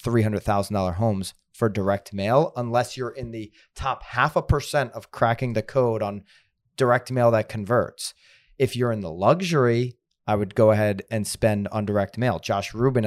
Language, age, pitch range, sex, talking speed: English, 30-49, 105-130 Hz, male, 170 wpm